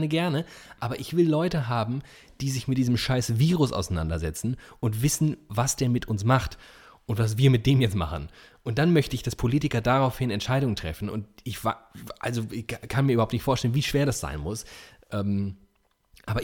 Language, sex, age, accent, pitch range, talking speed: German, male, 30-49, German, 105-135 Hz, 190 wpm